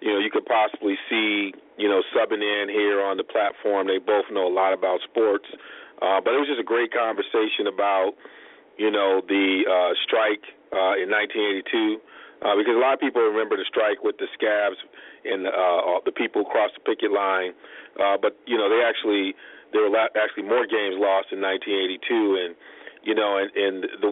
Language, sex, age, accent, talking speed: English, male, 40-59, American, 195 wpm